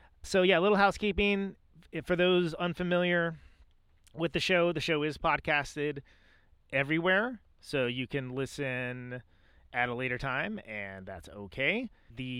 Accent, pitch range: American, 110-160 Hz